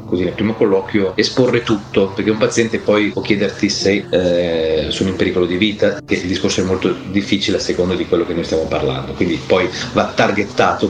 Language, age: Italian, 40-59